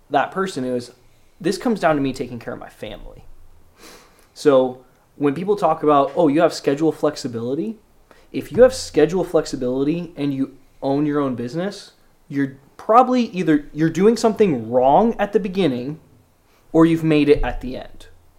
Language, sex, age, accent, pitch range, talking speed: English, male, 20-39, American, 130-165 Hz, 170 wpm